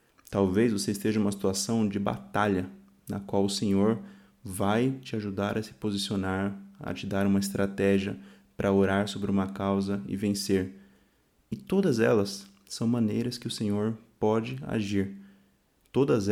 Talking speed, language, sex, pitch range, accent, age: 150 wpm, Portuguese, male, 100-120 Hz, Brazilian, 20-39